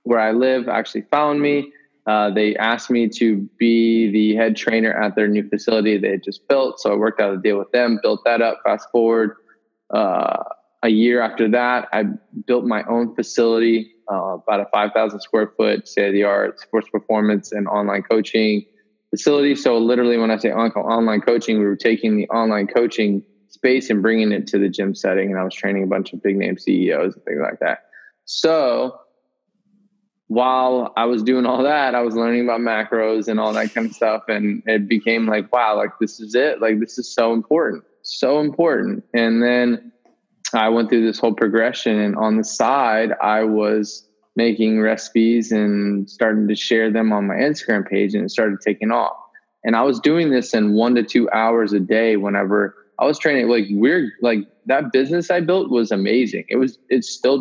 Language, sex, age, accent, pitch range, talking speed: English, male, 20-39, American, 105-120 Hz, 200 wpm